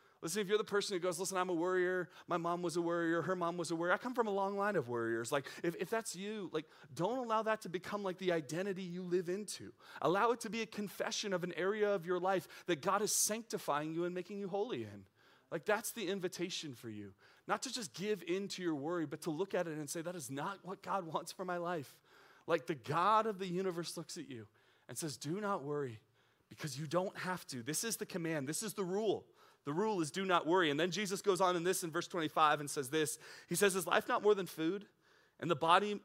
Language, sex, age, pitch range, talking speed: English, male, 30-49, 160-200 Hz, 260 wpm